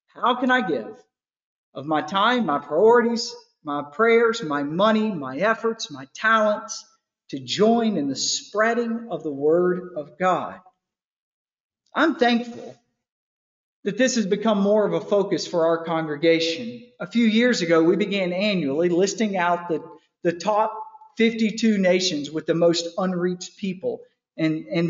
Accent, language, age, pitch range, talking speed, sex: American, English, 50-69, 165-225 Hz, 145 wpm, male